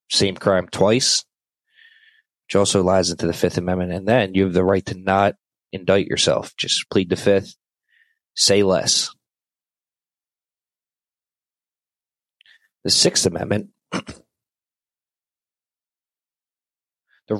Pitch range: 95-115 Hz